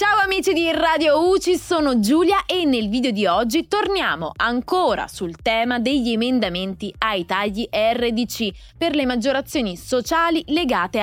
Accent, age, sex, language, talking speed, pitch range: native, 20-39, female, Italian, 140 wpm, 215-325 Hz